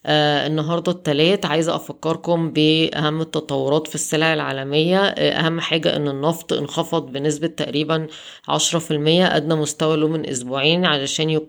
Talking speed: 120 wpm